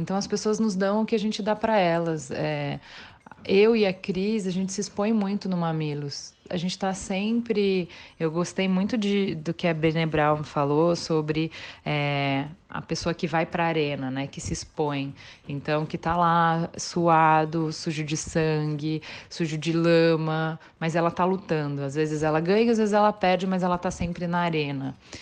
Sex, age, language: female, 30-49, Portuguese